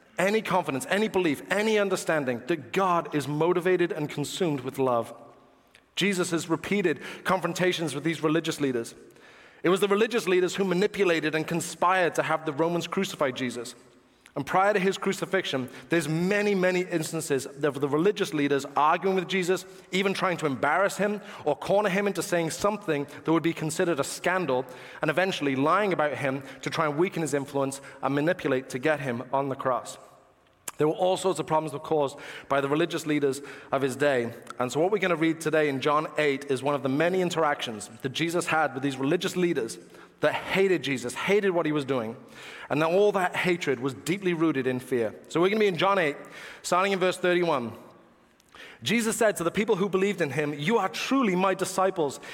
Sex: male